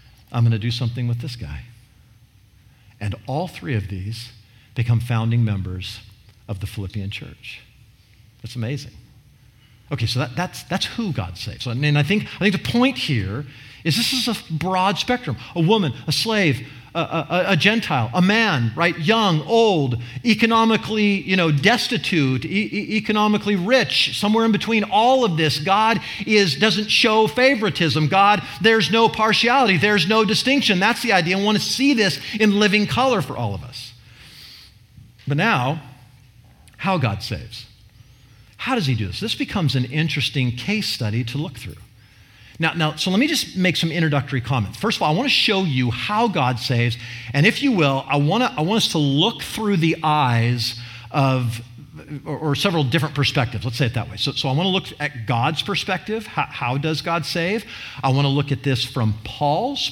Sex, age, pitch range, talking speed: male, 50-69, 120-200 Hz, 185 wpm